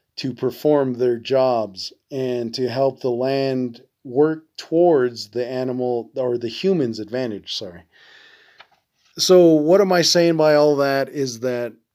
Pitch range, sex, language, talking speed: 125-150 Hz, male, English, 140 wpm